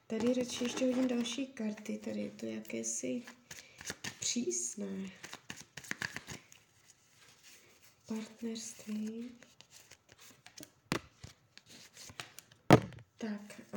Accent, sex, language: native, female, Czech